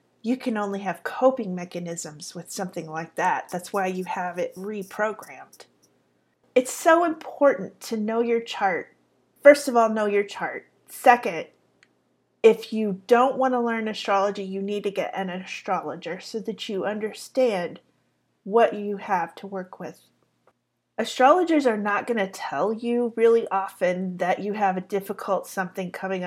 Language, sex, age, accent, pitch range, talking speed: English, female, 30-49, American, 185-230 Hz, 160 wpm